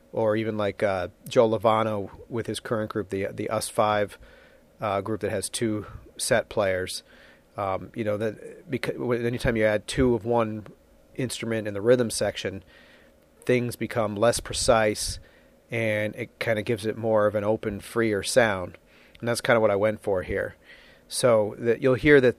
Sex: male